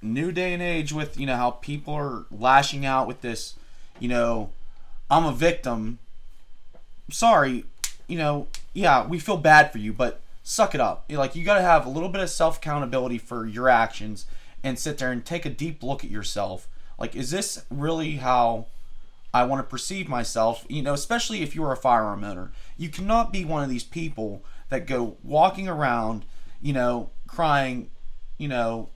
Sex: male